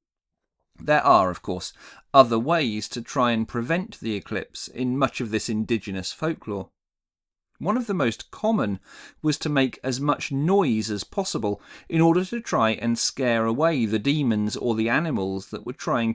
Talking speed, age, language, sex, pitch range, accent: 170 wpm, 40-59, English, male, 105-145 Hz, British